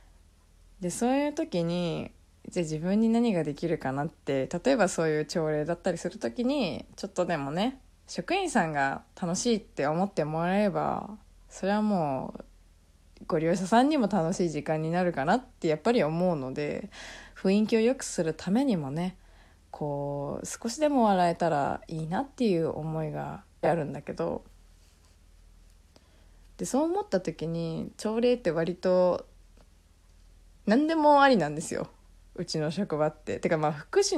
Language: Japanese